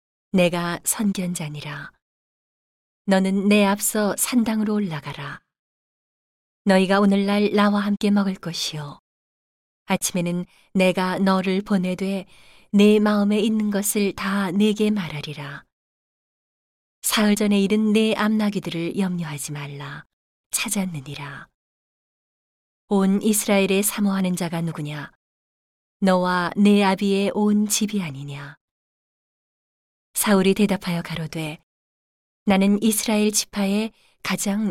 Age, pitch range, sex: 40-59, 165-210 Hz, female